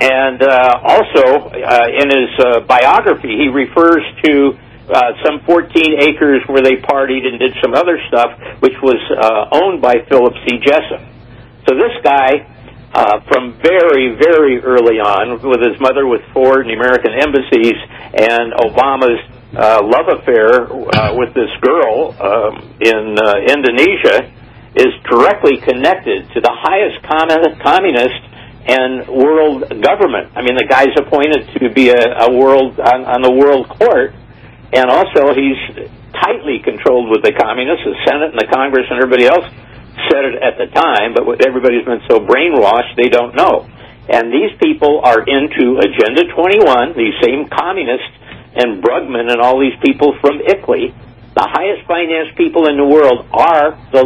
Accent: American